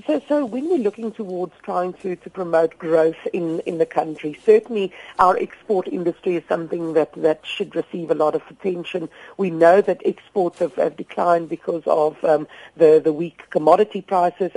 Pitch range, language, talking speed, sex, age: 165-210 Hz, English, 180 wpm, female, 50-69